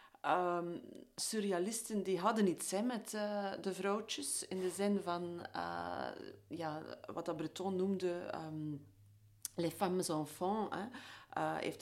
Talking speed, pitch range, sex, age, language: 135 wpm, 165-200 Hz, female, 40-59, Dutch